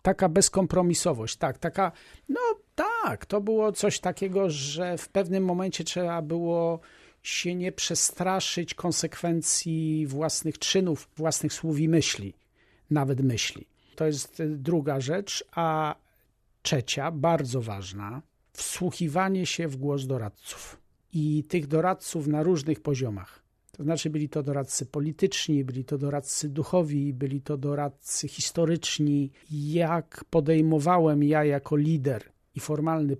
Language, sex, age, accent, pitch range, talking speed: Polish, male, 50-69, native, 140-175 Hz, 120 wpm